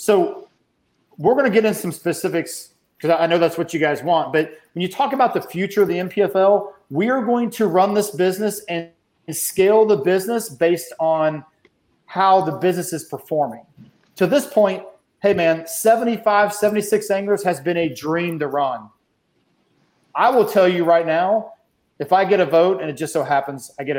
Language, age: English, 40-59